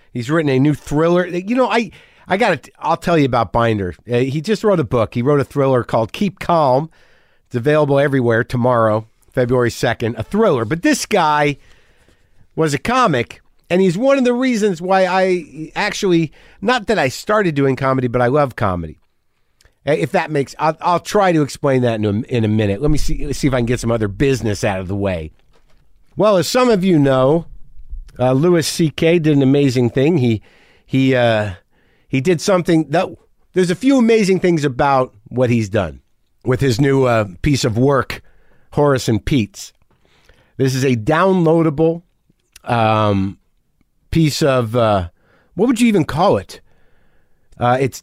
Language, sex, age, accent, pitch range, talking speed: English, male, 50-69, American, 120-170 Hz, 180 wpm